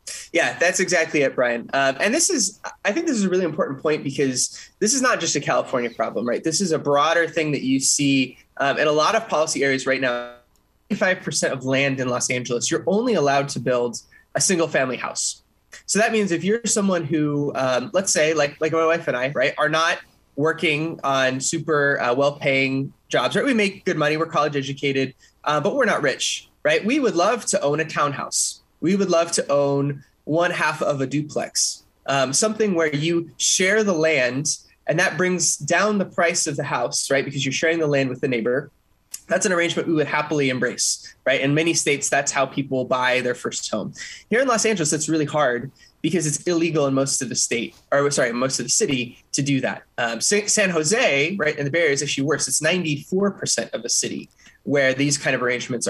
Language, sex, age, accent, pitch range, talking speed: English, male, 20-39, American, 135-170 Hz, 215 wpm